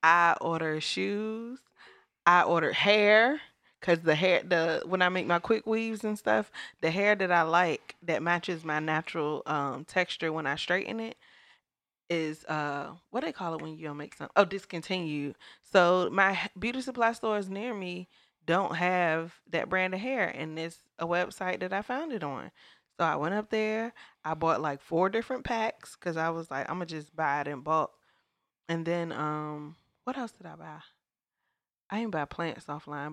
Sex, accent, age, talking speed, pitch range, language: female, American, 20-39, 185 wpm, 155-195 Hz, English